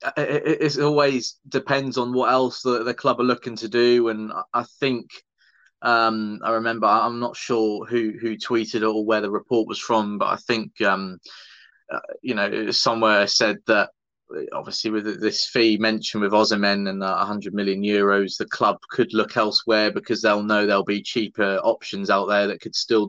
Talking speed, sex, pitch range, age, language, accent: 185 wpm, male, 105-120 Hz, 20-39, English, British